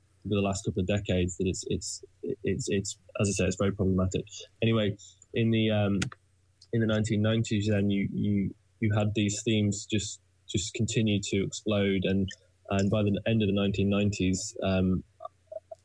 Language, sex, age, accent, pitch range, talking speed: English, male, 10-29, British, 95-110 Hz, 170 wpm